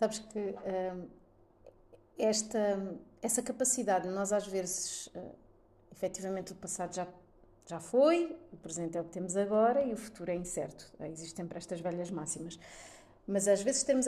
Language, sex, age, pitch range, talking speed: Portuguese, female, 30-49, 190-230 Hz, 160 wpm